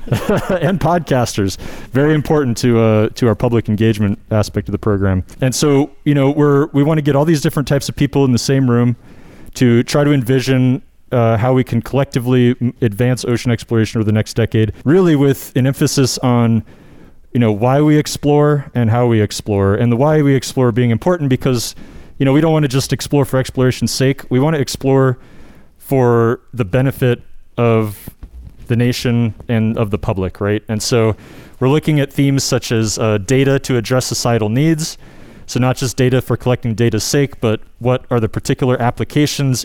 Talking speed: 190 wpm